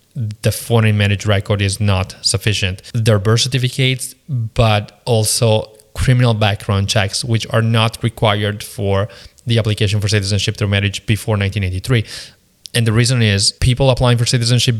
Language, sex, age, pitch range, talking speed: English, male, 20-39, 105-125 Hz, 145 wpm